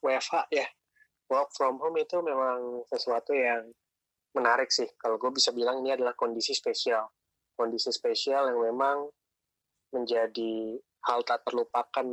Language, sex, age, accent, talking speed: Indonesian, male, 20-39, native, 135 wpm